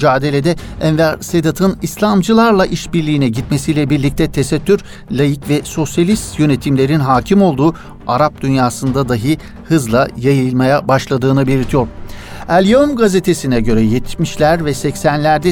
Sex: male